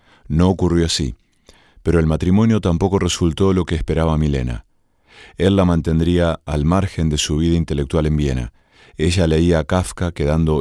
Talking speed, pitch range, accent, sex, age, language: 160 wpm, 75-95 Hz, Argentinian, male, 40-59, Spanish